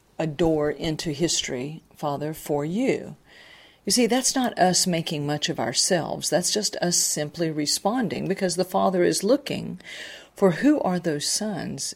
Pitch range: 150-190 Hz